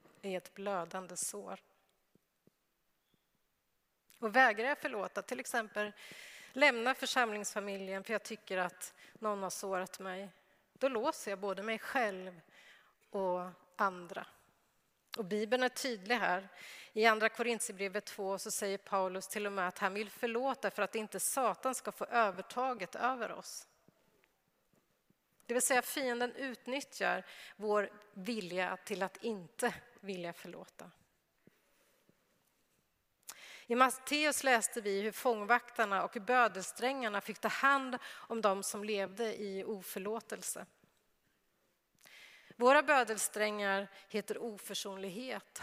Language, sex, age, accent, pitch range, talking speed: Swedish, female, 30-49, native, 195-240 Hz, 115 wpm